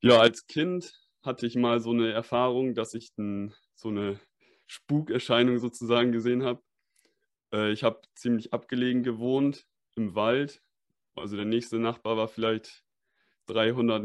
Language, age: German, 20-39